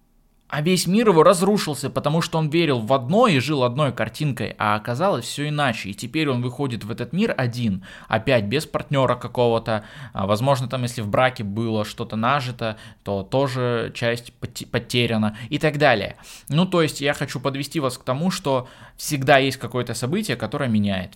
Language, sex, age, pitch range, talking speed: Russian, male, 20-39, 110-140 Hz, 175 wpm